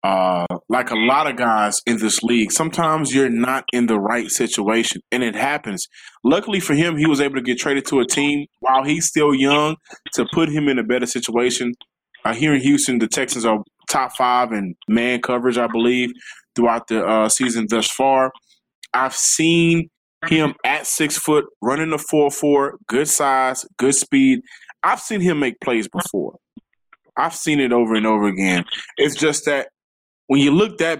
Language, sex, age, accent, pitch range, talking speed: English, male, 20-39, American, 125-150 Hz, 185 wpm